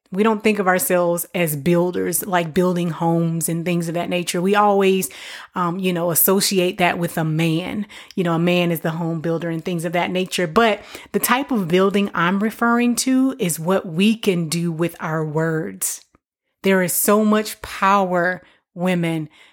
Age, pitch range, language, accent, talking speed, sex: 30-49, 175-215 Hz, English, American, 185 wpm, female